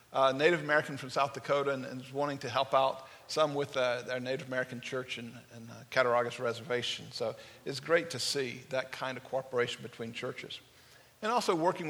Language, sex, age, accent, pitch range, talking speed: English, male, 50-69, American, 125-170 Hz, 190 wpm